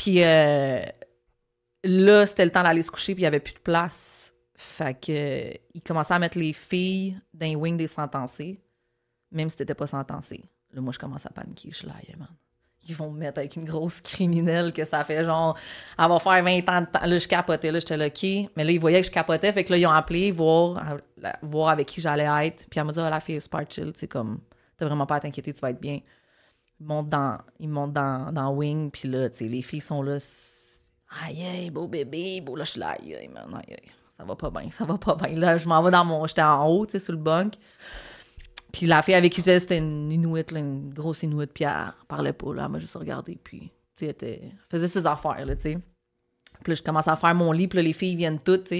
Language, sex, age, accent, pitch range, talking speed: French, female, 30-49, Canadian, 150-175 Hz, 245 wpm